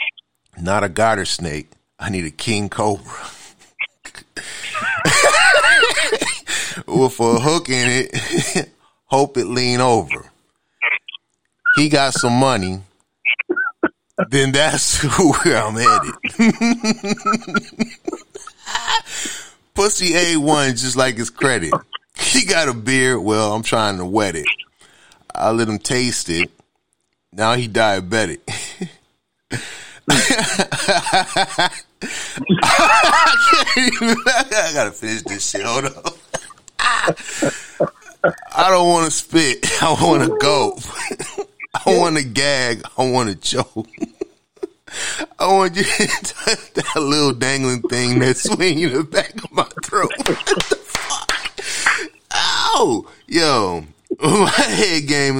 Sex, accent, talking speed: male, American, 110 wpm